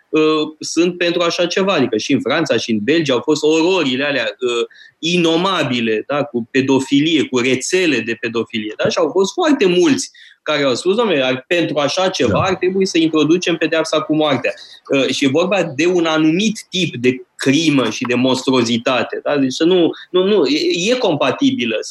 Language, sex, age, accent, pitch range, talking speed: Romanian, male, 20-39, native, 140-190 Hz, 165 wpm